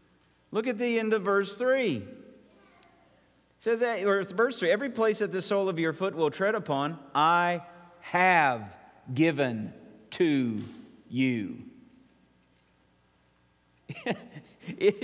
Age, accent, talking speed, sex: 50-69, American, 125 wpm, male